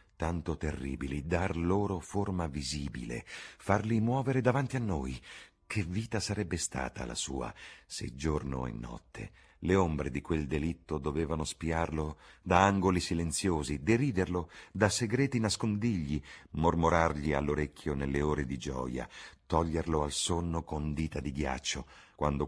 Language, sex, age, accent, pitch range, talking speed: Italian, male, 50-69, native, 70-85 Hz, 130 wpm